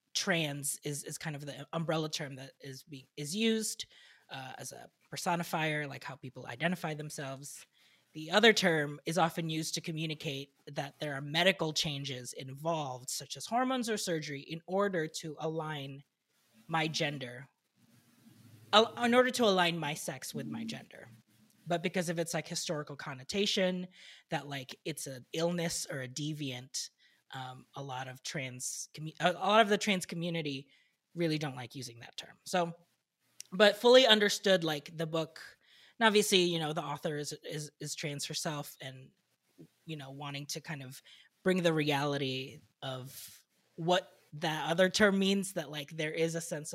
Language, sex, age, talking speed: English, female, 20-39, 165 wpm